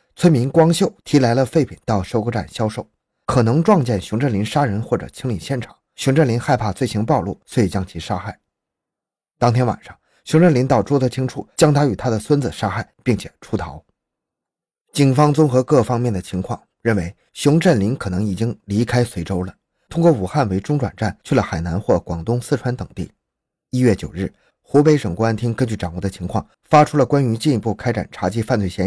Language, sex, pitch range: Chinese, male, 100-145 Hz